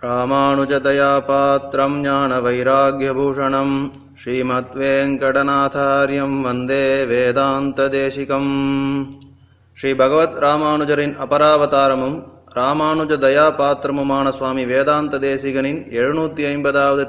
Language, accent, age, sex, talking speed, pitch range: Tamil, native, 20-39, male, 75 wpm, 130-145 Hz